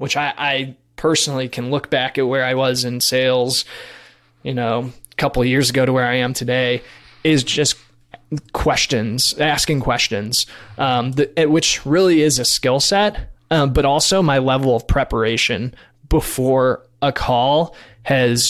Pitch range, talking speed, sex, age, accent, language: 125-145 Hz, 160 wpm, male, 20-39, American, English